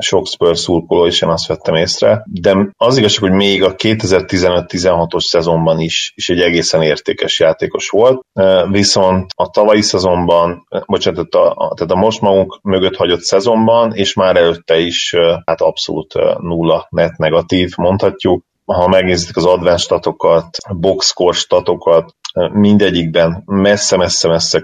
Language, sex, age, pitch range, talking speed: Hungarian, male, 30-49, 85-95 Hz, 135 wpm